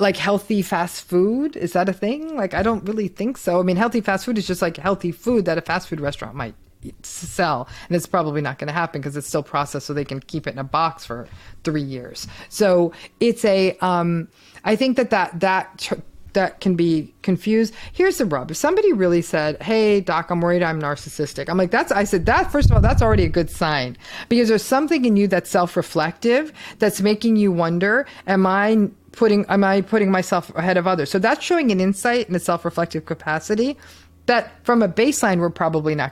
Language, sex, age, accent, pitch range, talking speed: English, female, 40-59, American, 155-210 Hz, 215 wpm